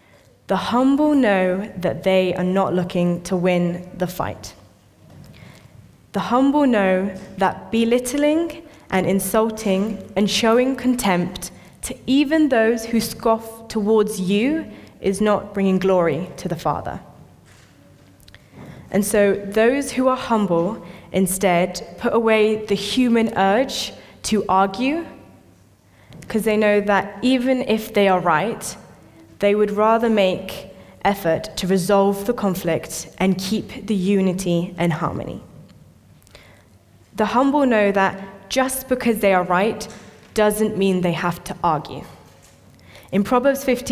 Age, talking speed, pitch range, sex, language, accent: 10-29, 125 wpm, 180-230 Hz, female, English, British